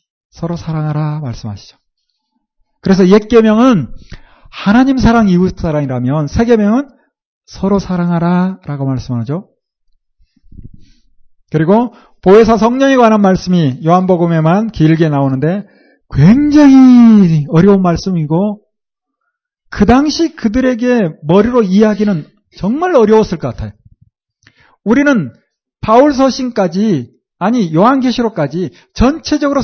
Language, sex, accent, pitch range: Korean, male, native, 160-245 Hz